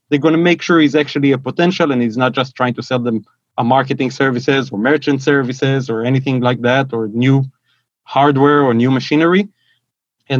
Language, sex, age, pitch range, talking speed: English, male, 30-49, 125-145 Hz, 195 wpm